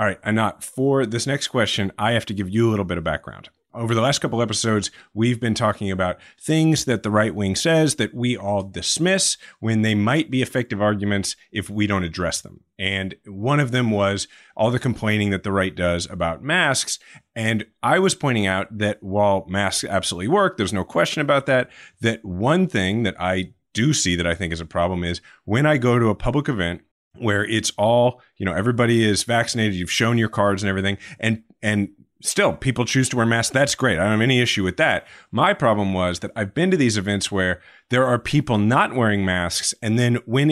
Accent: American